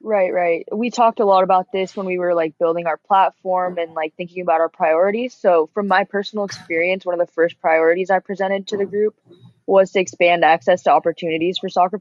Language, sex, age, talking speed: English, female, 20-39, 220 wpm